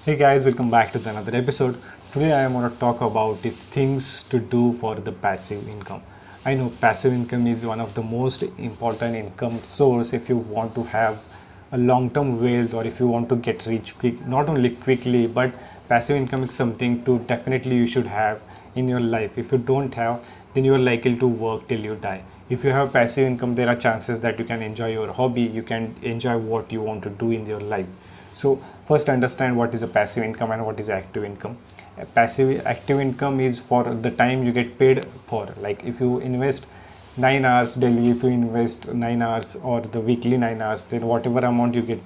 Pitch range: 115-130 Hz